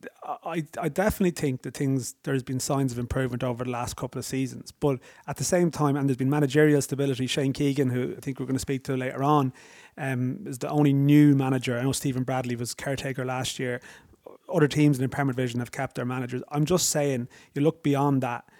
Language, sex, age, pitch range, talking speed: English, male, 30-49, 130-145 Hz, 225 wpm